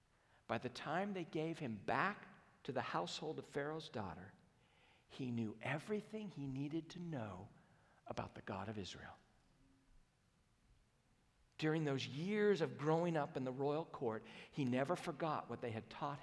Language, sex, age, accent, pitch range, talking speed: English, male, 50-69, American, 115-155 Hz, 155 wpm